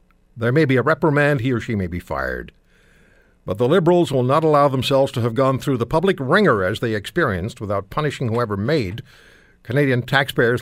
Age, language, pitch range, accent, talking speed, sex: 60-79, English, 90-135 Hz, American, 190 wpm, male